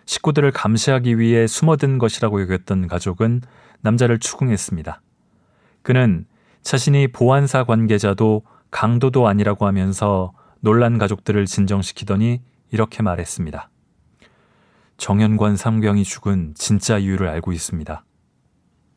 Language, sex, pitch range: Korean, male, 100-125 Hz